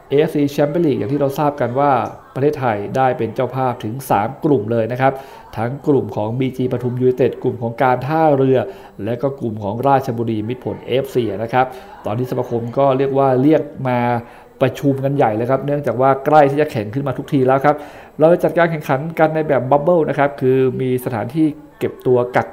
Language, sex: Thai, male